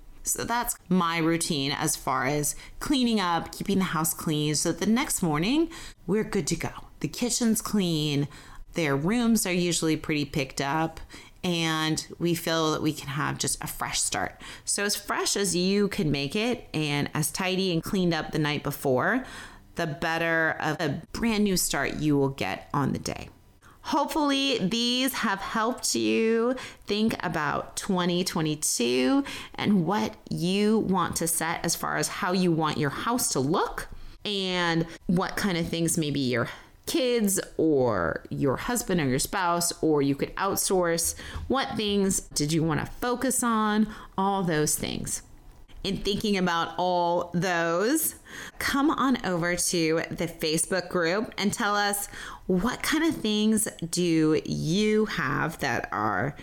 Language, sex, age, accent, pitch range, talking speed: English, female, 30-49, American, 155-205 Hz, 160 wpm